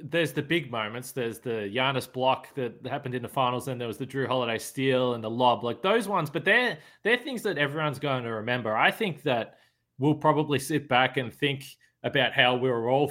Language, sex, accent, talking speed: English, male, Australian, 225 wpm